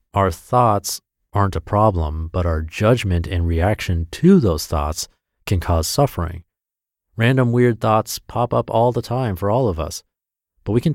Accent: American